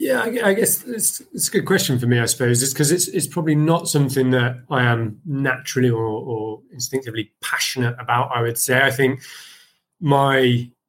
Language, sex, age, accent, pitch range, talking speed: English, male, 30-49, British, 105-130 Hz, 185 wpm